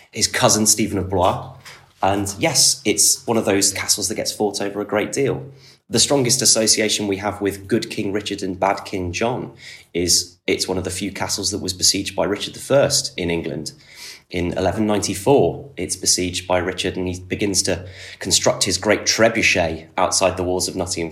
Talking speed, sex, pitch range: 190 wpm, male, 90-105 Hz